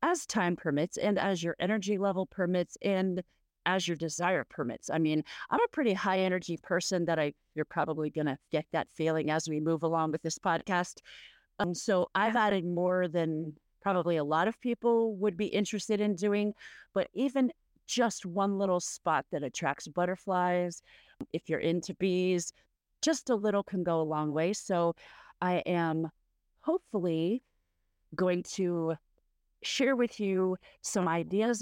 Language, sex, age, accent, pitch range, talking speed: English, female, 40-59, American, 165-205 Hz, 165 wpm